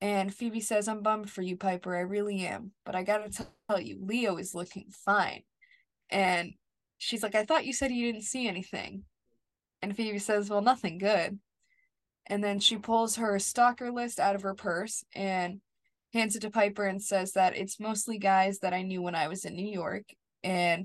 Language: English